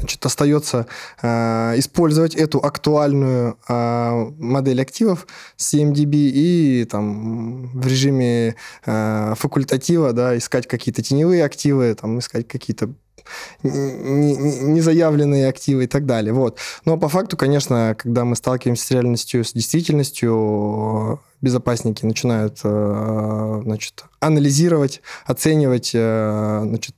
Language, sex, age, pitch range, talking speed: Russian, male, 20-39, 115-145 Hz, 90 wpm